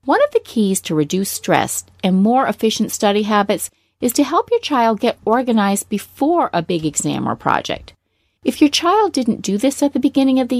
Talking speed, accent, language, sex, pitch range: 205 wpm, American, English, female, 190-280 Hz